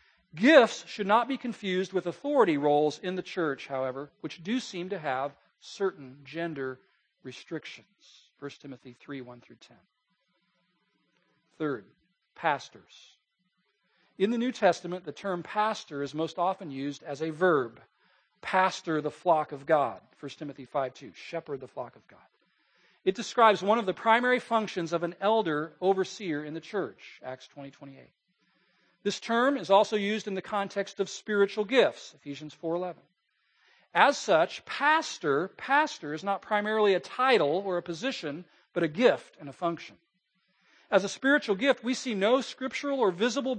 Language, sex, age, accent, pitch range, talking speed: English, male, 40-59, American, 155-210 Hz, 160 wpm